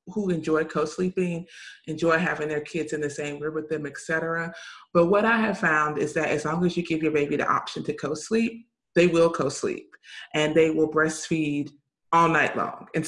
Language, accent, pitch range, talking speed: English, American, 155-195 Hz, 200 wpm